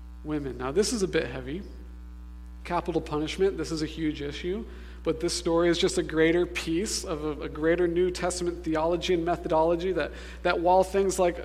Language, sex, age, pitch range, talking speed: English, male, 40-59, 135-180 Hz, 190 wpm